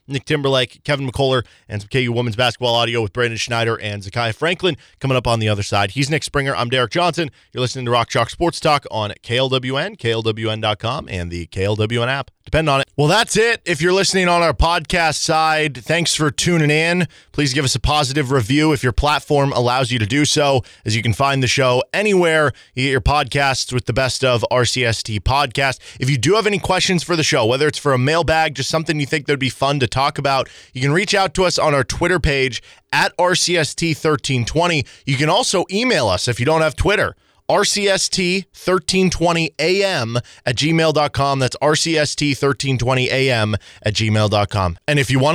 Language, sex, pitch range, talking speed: English, male, 125-165 Hz, 205 wpm